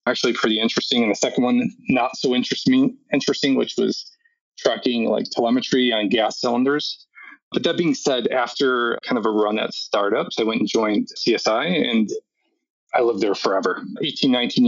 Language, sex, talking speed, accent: English, male, 170 wpm, American